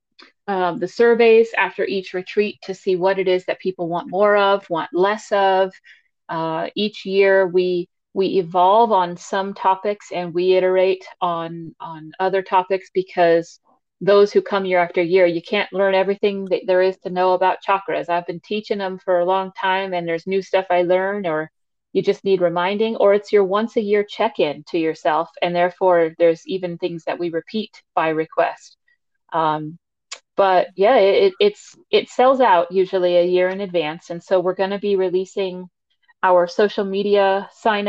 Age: 40-59